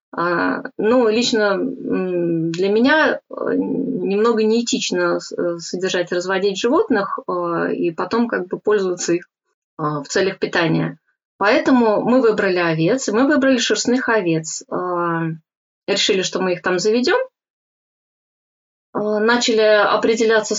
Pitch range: 195-235 Hz